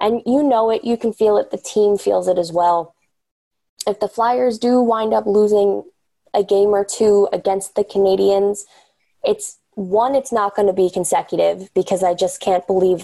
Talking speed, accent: 185 wpm, American